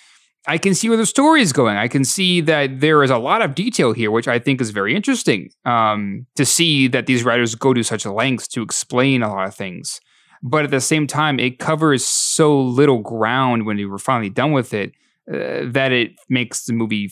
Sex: male